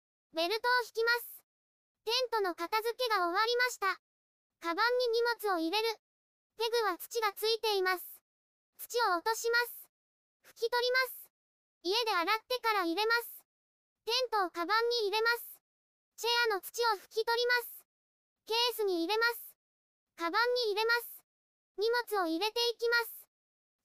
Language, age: Japanese, 20-39